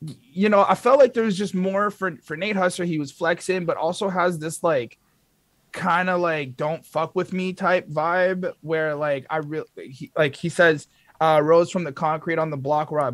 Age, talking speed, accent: 30-49, 220 wpm, American